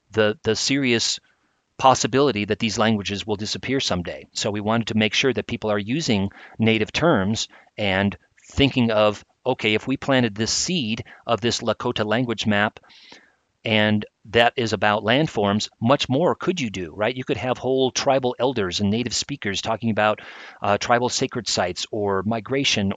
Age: 40-59